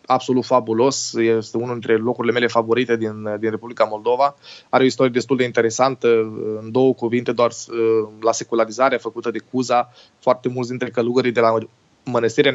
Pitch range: 115-125 Hz